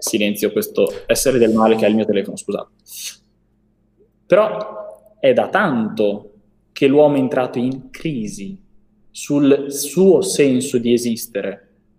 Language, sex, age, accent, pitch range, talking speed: Italian, male, 20-39, native, 110-150 Hz, 130 wpm